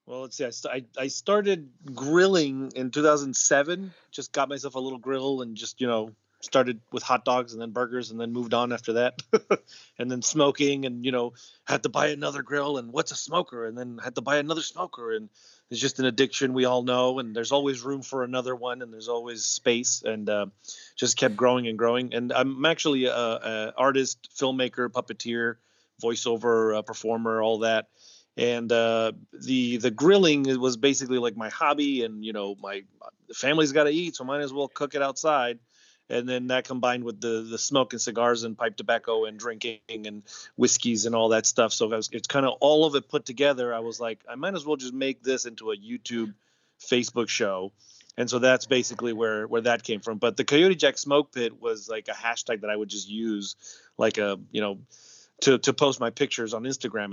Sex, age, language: male, 30-49, English